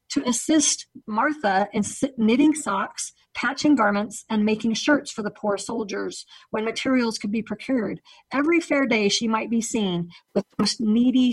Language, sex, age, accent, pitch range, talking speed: English, female, 40-59, American, 205-270 Hz, 165 wpm